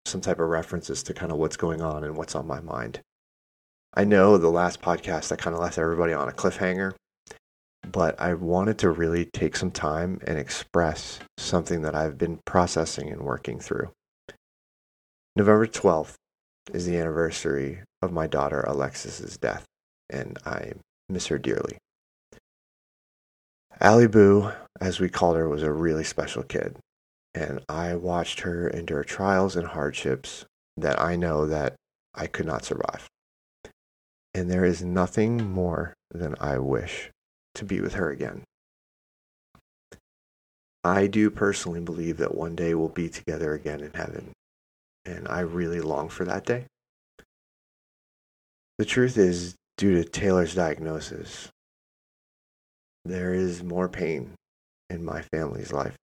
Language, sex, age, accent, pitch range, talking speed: English, male, 30-49, American, 75-90 Hz, 145 wpm